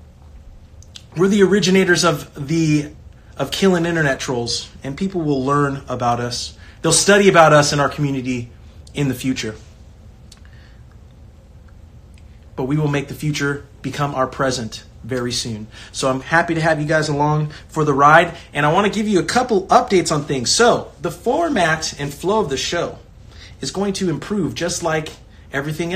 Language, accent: English, American